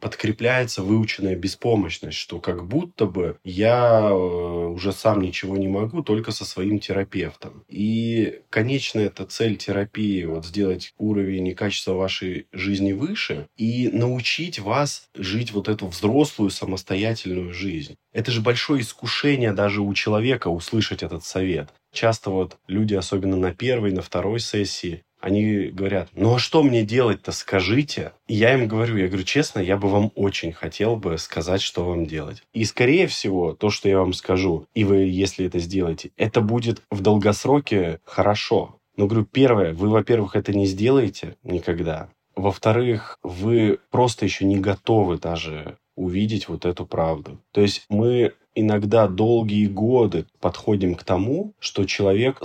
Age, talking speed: 20-39, 150 wpm